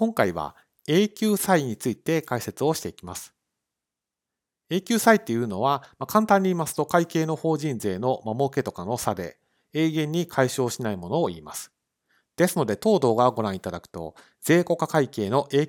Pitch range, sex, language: 105-160 Hz, male, Japanese